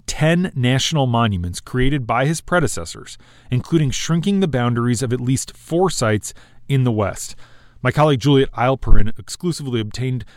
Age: 30-49